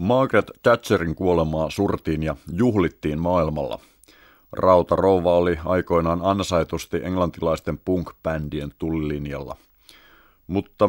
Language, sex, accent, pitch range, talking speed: Finnish, male, native, 80-105 Hz, 75 wpm